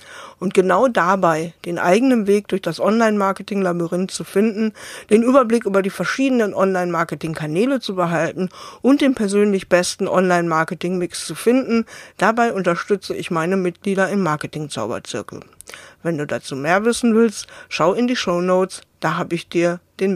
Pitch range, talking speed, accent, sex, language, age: 175-225 Hz, 145 wpm, German, female, German, 50-69